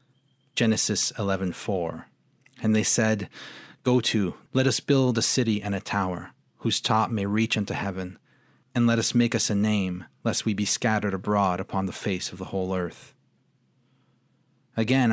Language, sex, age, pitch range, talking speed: English, male, 40-59, 95-120 Hz, 165 wpm